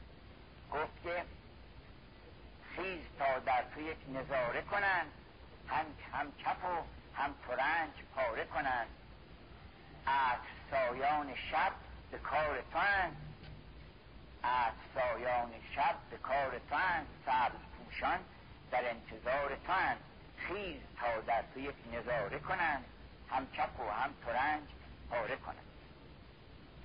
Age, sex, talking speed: 60-79, male, 95 wpm